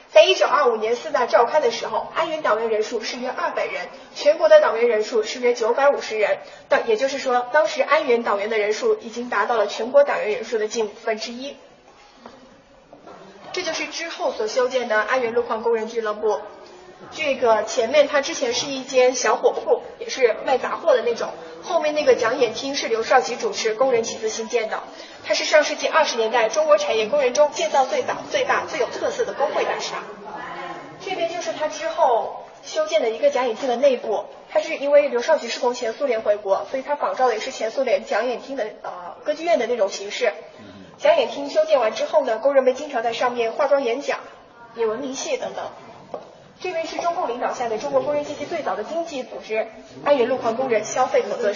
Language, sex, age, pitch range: Chinese, female, 20-39, 230-315 Hz